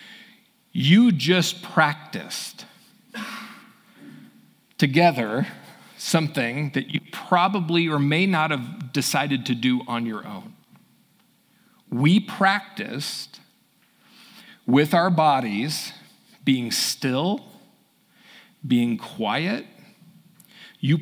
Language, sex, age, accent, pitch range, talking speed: English, male, 40-59, American, 140-210 Hz, 80 wpm